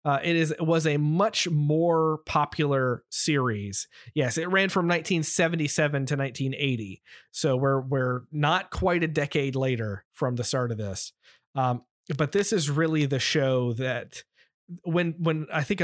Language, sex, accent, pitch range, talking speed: English, male, American, 125-160 Hz, 160 wpm